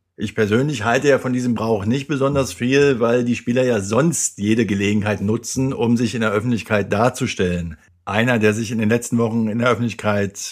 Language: German